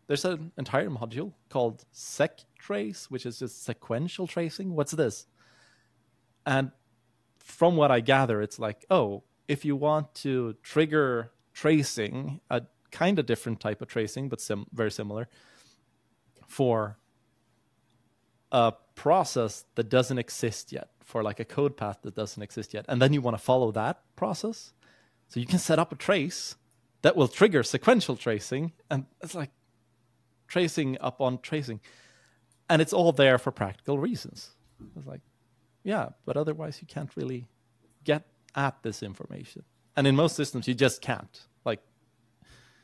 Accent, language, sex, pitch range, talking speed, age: Norwegian, English, male, 110-145 Hz, 150 wpm, 20-39